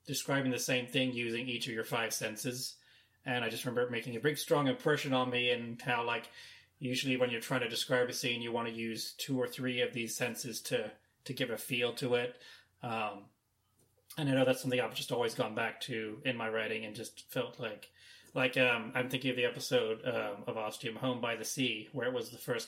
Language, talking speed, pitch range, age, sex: English, 230 wpm, 115-130 Hz, 30-49, male